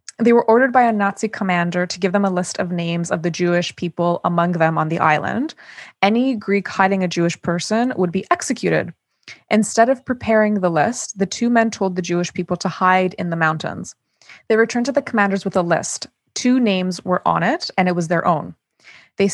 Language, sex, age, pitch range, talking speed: English, female, 20-39, 175-215 Hz, 210 wpm